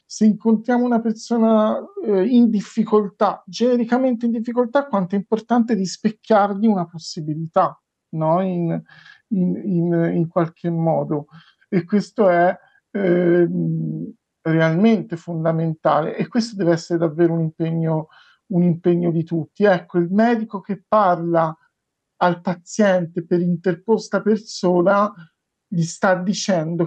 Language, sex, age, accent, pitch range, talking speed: Italian, male, 50-69, native, 170-220 Hz, 110 wpm